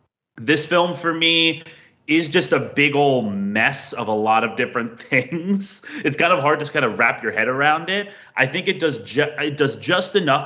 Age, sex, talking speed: 30-49, male, 220 wpm